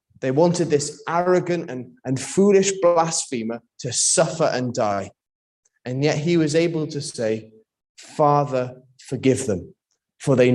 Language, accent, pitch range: English, British, 130-175 Hz